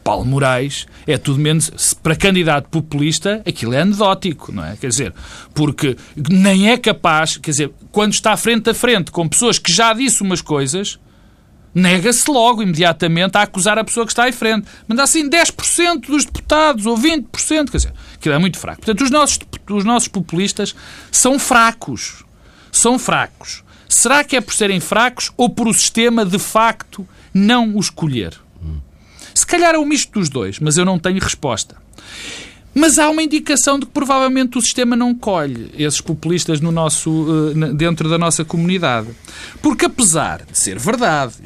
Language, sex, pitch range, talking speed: Portuguese, male, 140-225 Hz, 170 wpm